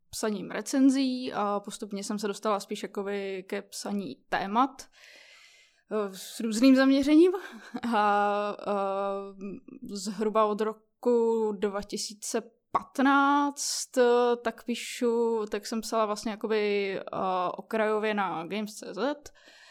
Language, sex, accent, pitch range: Czech, female, native, 200-230 Hz